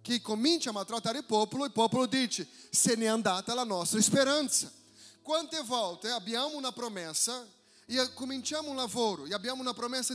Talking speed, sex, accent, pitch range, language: 175 wpm, male, Brazilian, 220-275 Hz, Italian